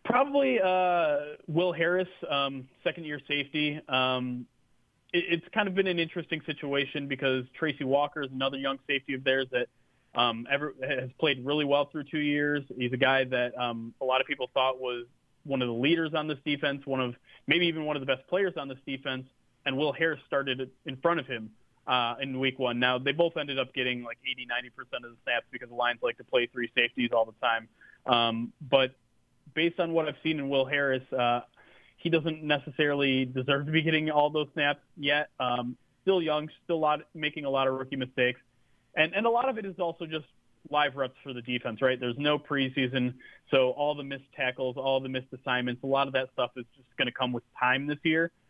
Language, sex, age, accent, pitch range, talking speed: English, male, 30-49, American, 125-150 Hz, 215 wpm